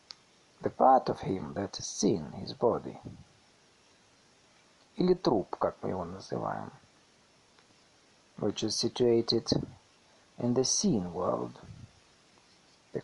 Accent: native